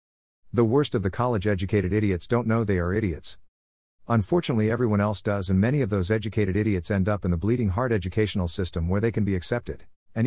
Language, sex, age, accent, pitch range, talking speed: English, male, 50-69, American, 90-115 Hz, 200 wpm